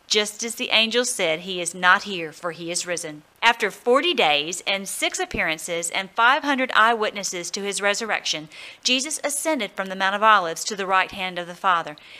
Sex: female